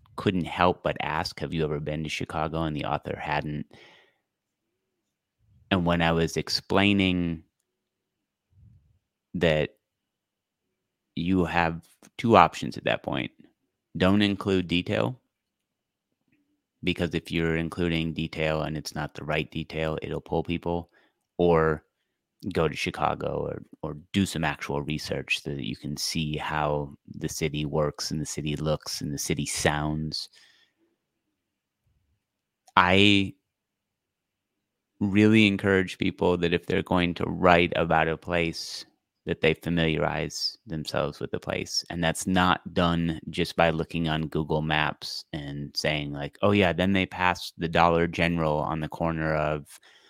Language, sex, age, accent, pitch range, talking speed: English, male, 30-49, American, 75-90 Hz, 140 wpm